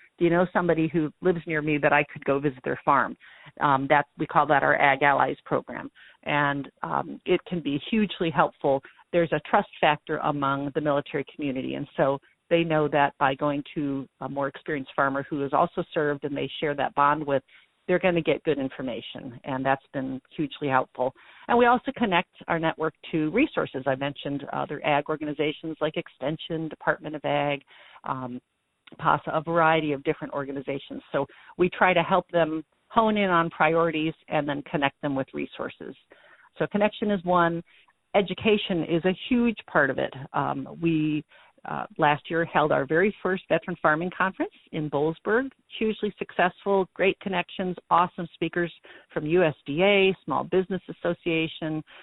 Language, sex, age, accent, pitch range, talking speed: English, female, 50-69, American, 145-180 Hz, 170 wpm